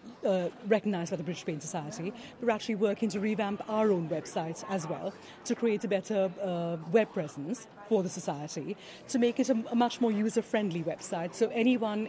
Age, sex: 30-49, female